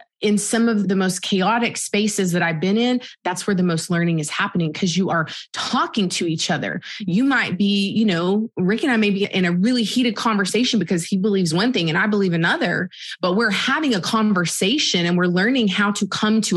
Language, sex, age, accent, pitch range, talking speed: English, female, 20-39, American, 185-230 Hz, 220 wpm